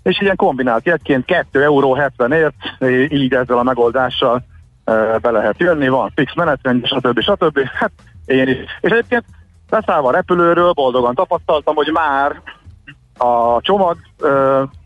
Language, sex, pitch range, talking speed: Hungarian, male, 115-145 Hz, 140 wpm